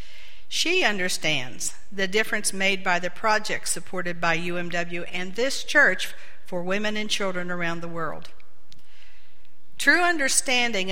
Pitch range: 160-210 Hz